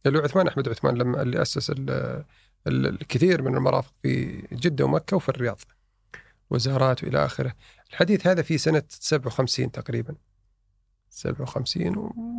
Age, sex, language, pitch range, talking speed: 40-59, male, Arabic, 125-185 Hz, 120 wpm